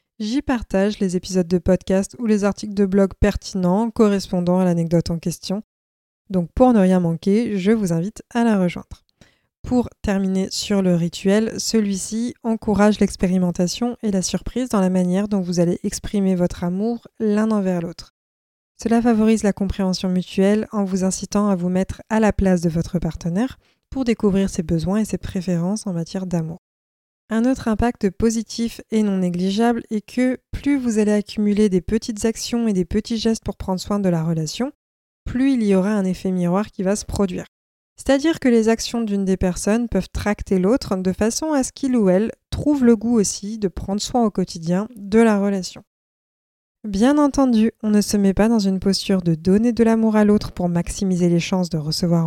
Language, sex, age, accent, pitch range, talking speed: French, female, 20-39, French, 185-225 Hz, 190 wpm